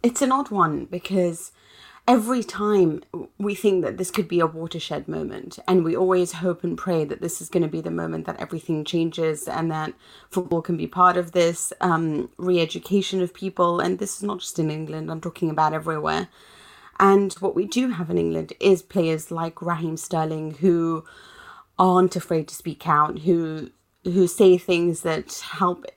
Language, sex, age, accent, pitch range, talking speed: English, female, 30-49, British, 160-185 Hz, 185 wpm